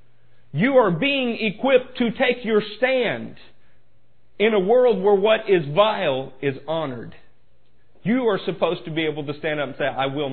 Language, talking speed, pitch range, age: English, 175 wpm, 120-175 Hz, 50-69